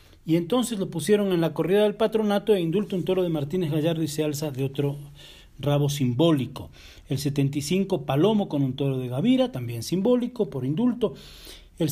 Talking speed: 180 wpm